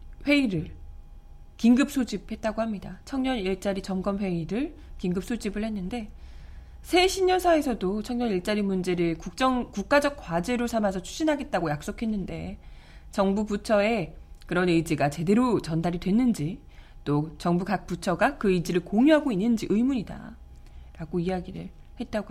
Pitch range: 170-240 Hz